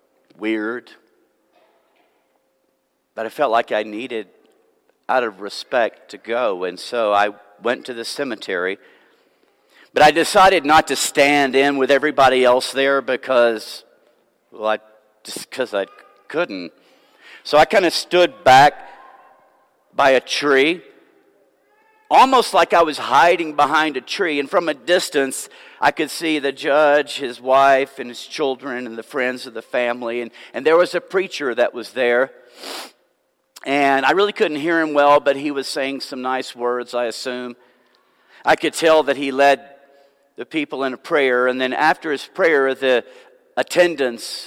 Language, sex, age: English, male, 50-69